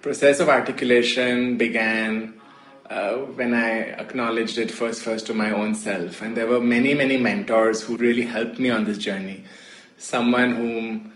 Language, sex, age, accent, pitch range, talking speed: Hindi, male, 20-39, native, 110-120 Hz, 160 wpm